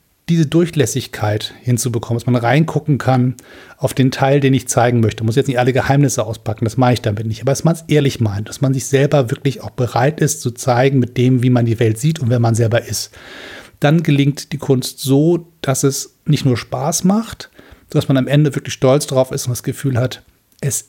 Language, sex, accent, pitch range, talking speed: German, male, German, 125-145 Hz, 225 wpm